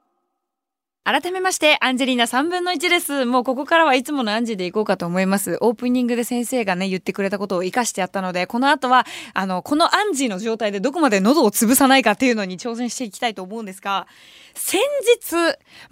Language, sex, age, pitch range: Japanese, female, 20-39, 205-325 Hz